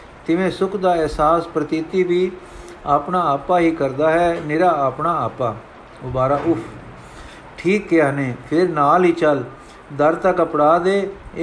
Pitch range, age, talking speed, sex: 150-180 Hz, 50-69, 140 wpm, male